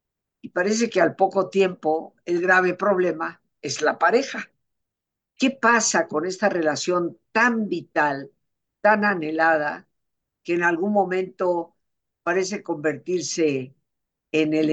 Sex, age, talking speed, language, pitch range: female, 50-69, 120 wpm, Spanish, 155-200 Hz